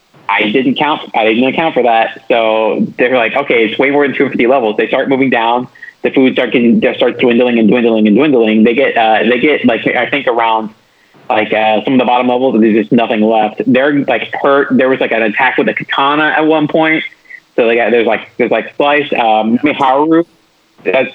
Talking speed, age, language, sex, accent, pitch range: 220 wpm, 30-49, English, male, American, 110-135 Hz